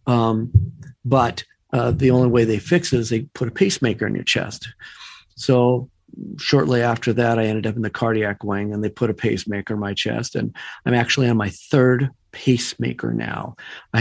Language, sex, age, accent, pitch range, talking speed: English, male, 50-69, American, 105-125 Hz, 195 wpm